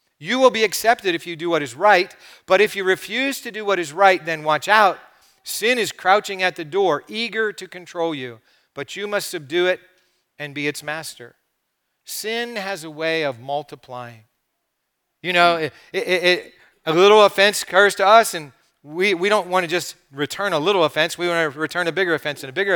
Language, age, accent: English, 40-59, American